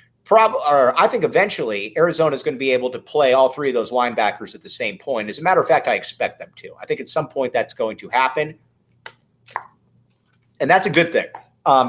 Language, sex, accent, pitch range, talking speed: English, male, American, 135-175 Hz, 230 wpm